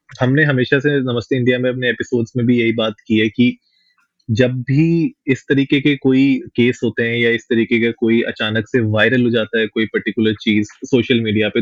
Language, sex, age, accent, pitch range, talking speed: Hindi, male, 20-39, native, 115-135 Hz, 210 wpm